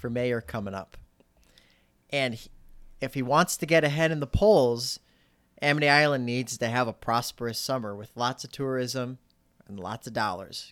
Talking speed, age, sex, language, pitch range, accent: 175 wpm, 30-49, male, English, 105-140 Hz, American